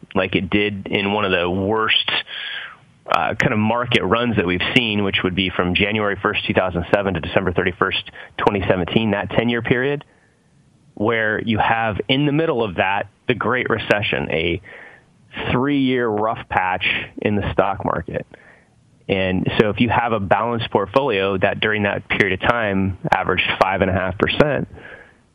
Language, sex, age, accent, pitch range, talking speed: English, male, 30-49, American, 95-120 Hz, 160 wpm